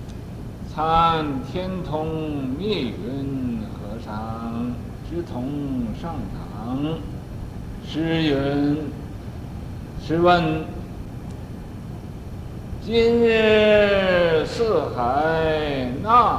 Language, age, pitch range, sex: Chinese, 60-79, 125-165 Hz, male